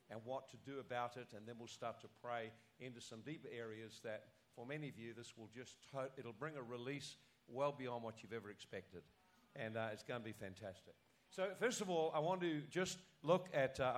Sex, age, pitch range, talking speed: male, 50-69, 120-160 Hz, 225 wpm